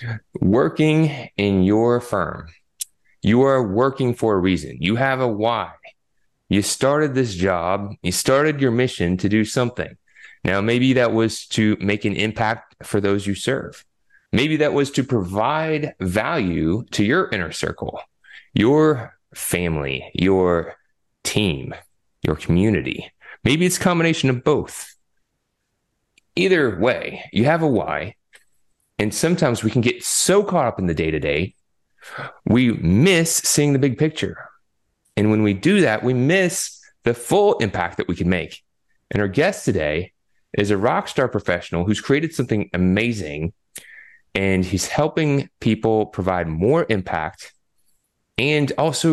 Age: 30-49